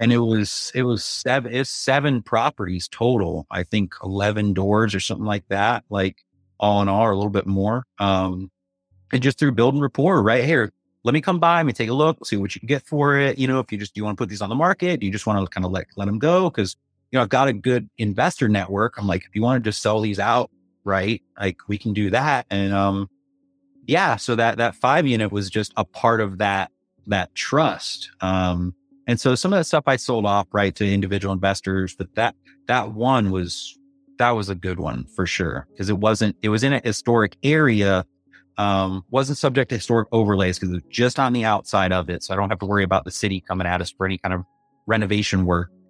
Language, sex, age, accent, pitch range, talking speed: English, male, 30-49, American, 95-120 Hz, 245 wpm